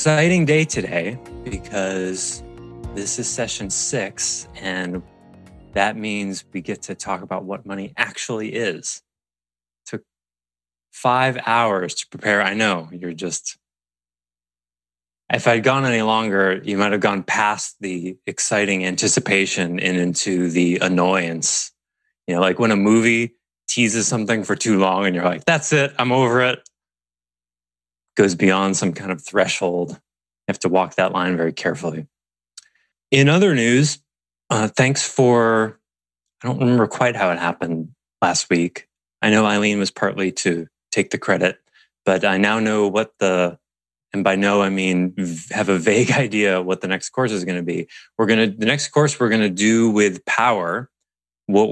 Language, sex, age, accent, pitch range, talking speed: English, male, 30-49, American, 85-110 Hz, 160 wpm